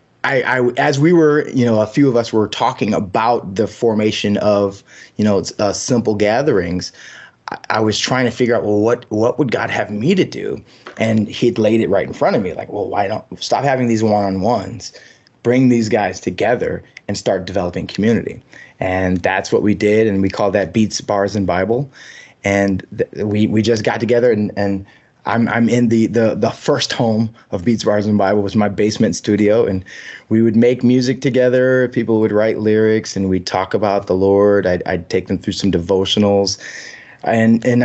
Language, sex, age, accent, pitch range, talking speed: English, male, 20-39, American, 100-120 Hz, 200 wpm